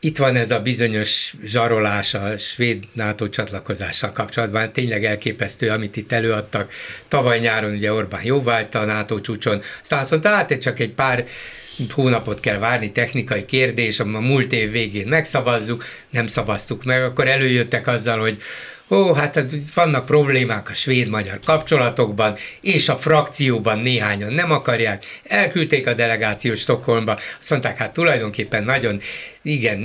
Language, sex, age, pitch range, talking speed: Hungarian, male, 60-79, 115-150 Hz, 145 wpm